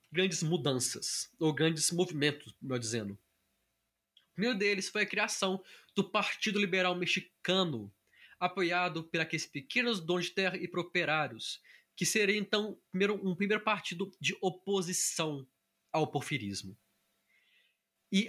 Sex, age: male, 20-39